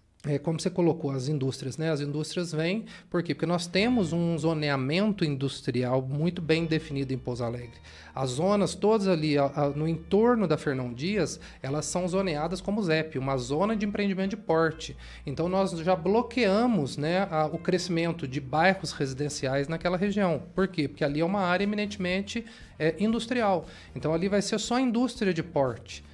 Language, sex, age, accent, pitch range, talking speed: Portuguese, male, 40-59, Brazilian, 140-190 Hz, 180 wpm